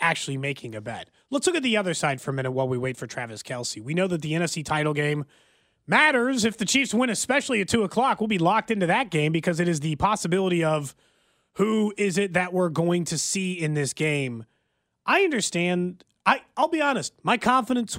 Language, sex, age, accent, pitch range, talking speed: English, male, 30-49, American, 150-220 Hz, 220 wpm